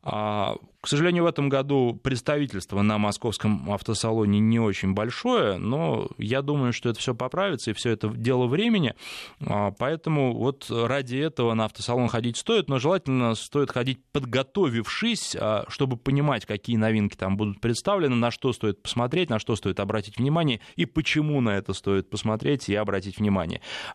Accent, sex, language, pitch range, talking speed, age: native, male, Russian, 105-135 Hz, 155 wpm, 20-39